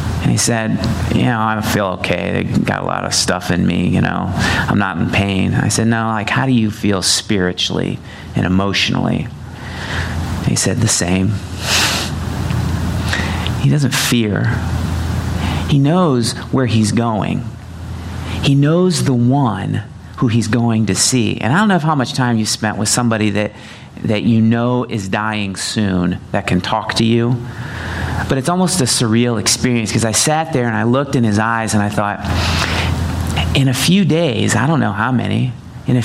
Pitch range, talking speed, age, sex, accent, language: 95-125 Hz, 180 wpm, 30-49, male, American, English